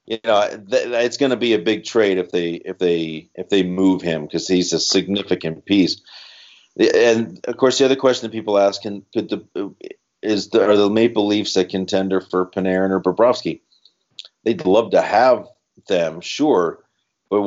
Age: 40-59